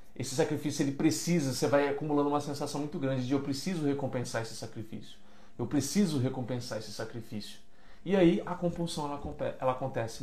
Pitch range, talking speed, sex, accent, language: 115-165 Hz, 165 wpm, male, Brazilian, Portuguese